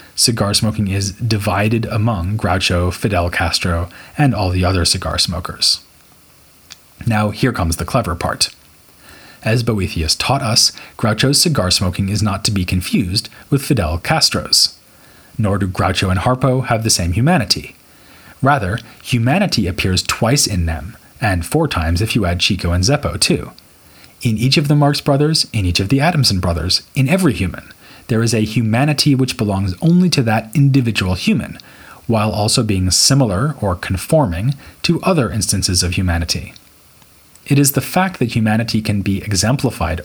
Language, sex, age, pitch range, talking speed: English, male, 30-49, 95-125 Hz, 160 wpm